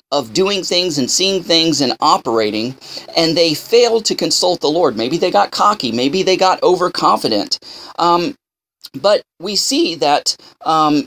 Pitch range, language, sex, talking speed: 165-230 Hz, English, male, 155 wpm